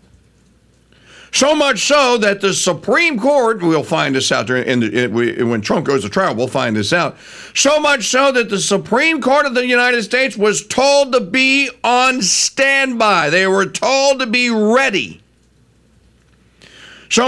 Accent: American